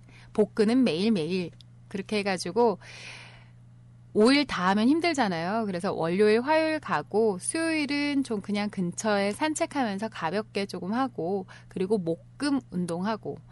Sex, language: female, Korean